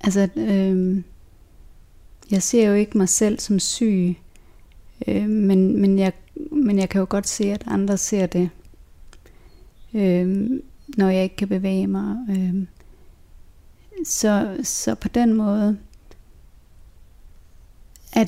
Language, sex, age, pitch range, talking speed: Danish, female, 30-49, 175-210 Hz, 125 wpm